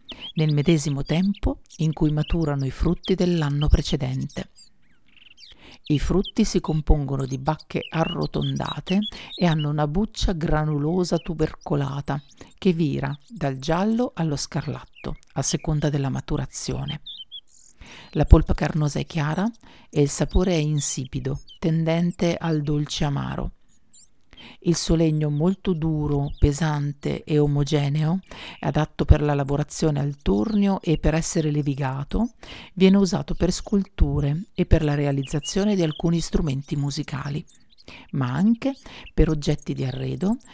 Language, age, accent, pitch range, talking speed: Italian, 50-69, native, 145-175 Hz, 125 wpm